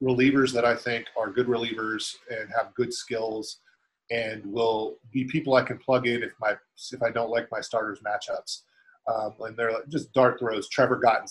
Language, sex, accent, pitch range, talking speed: English, male, American, 110-130 Hz, 200 wpm